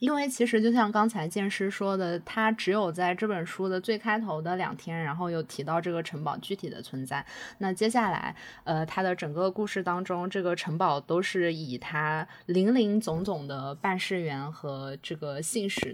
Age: 20-39